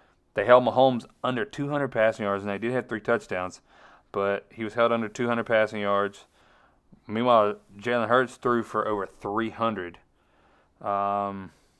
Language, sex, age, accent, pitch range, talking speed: English, male, 30-49, American, 95-115 Hz, 145 wpm